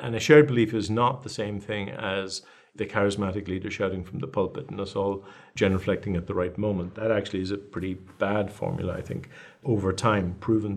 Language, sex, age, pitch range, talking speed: English, male, 50-69, 100-125 Hz, 210 wpm